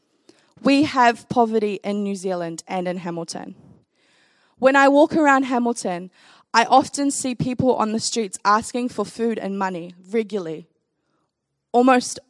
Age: 10-29